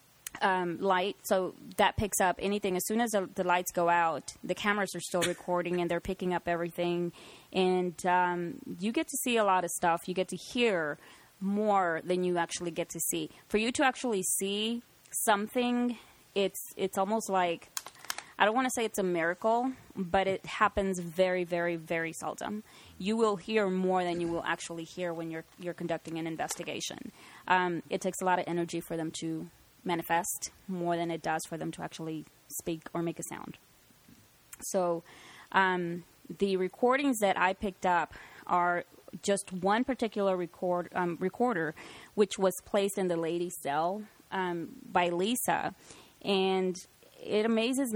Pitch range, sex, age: 175-205 Hz, female, 20-39